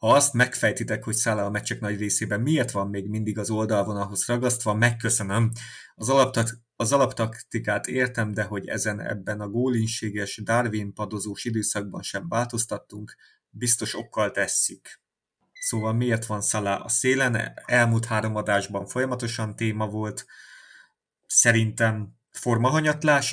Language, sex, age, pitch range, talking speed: Hungarian, male, 30-49, 105-120 Hz, 125 wpm